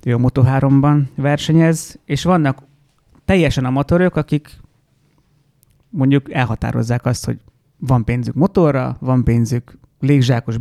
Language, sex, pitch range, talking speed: Hungarian, male, 125-150 Hz, 115 wpm